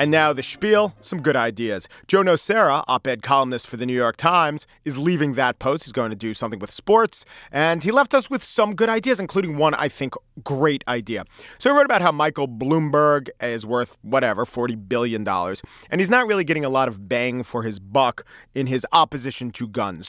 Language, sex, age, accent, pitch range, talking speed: English, male, 40-59, American, 125-165 Hz, 210 wpm